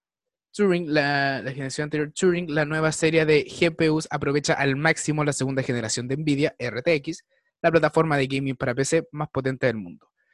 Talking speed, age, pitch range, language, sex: 175 wpm, 20-39, 140-170 Hz, Spanish, male